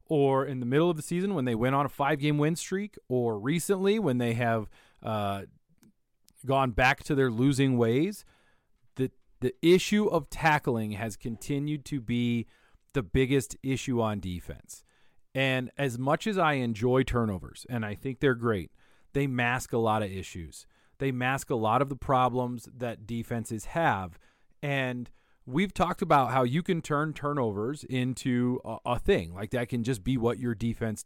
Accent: American